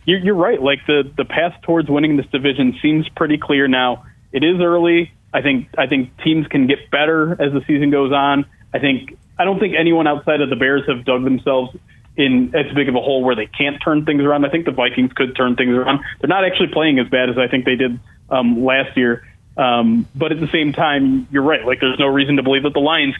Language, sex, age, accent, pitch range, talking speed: English, male, 30-49, American, 125-155 Hz, 245 wpm